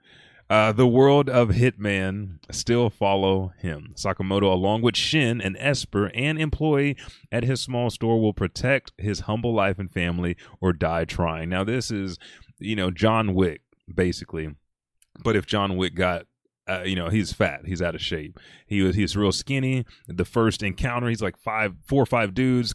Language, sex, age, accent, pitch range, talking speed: English, male, 30-49, American, 95-120 Hz, 175 wpm